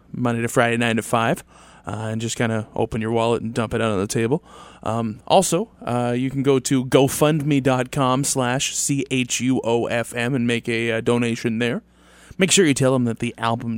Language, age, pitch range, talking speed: English, 20-39, 115-130 Hz, 195 wpm